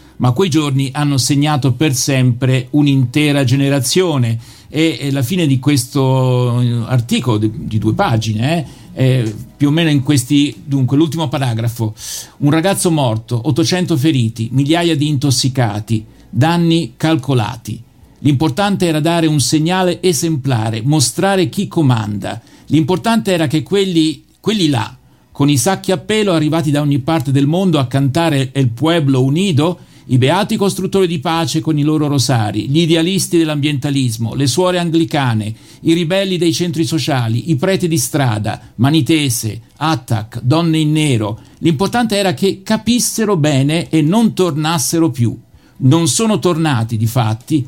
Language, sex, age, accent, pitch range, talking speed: Italian, male, 50-69, native, 125-165 Hz, 140 wpm